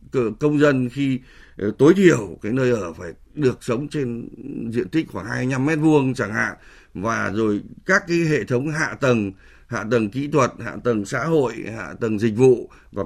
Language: Vietnamese